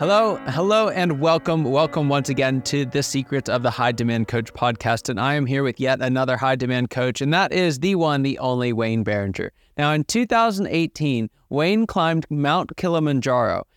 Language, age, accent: English, 20-39, American